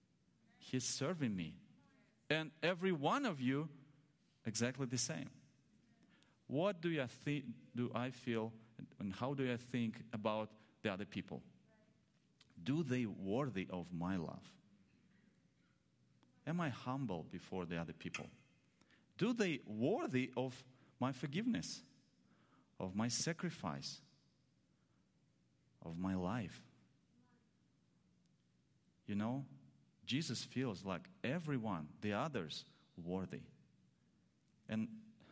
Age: 40-59